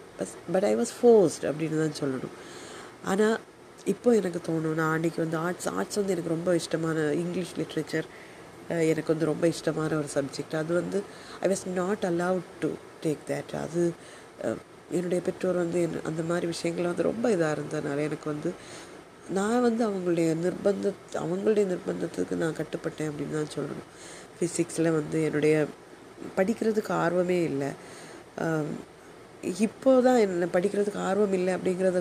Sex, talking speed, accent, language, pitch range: female, 140 wpm, native, Tamil, 155-190 Hz